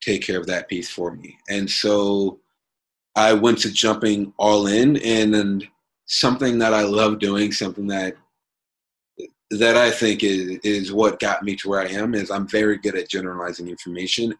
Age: 30-49